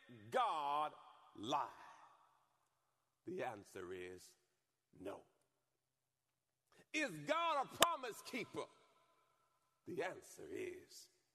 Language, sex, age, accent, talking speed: English, male, 50-69, American, 75 wpm